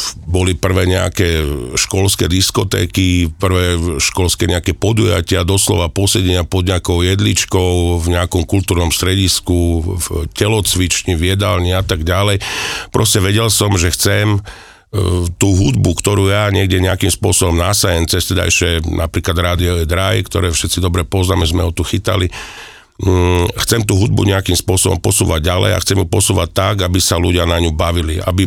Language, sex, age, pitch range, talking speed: Slovak, male, 50-69, 85-95 Hz, 150 wpm